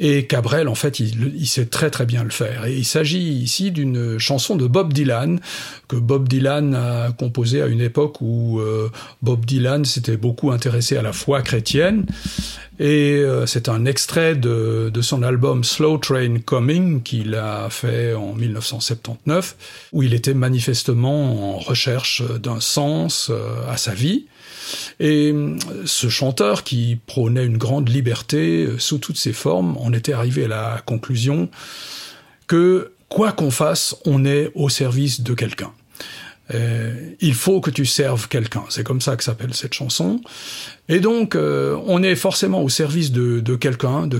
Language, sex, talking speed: French, male, 170 wpm